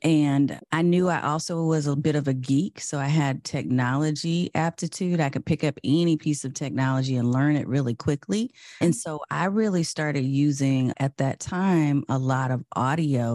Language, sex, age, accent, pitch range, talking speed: English, female, 30-49, American, 135-165 Hz, 190 wpm